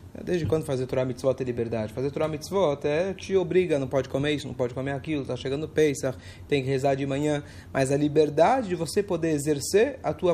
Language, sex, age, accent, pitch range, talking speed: Portuguese, male, 30-49, Brazilian, 130-175 Hz, 215 wpm